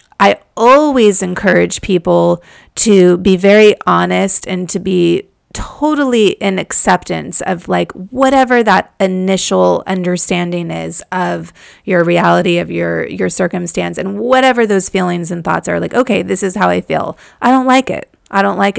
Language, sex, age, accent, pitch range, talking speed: English, female, 30-49, American, 185-230 Hz, 155 wpm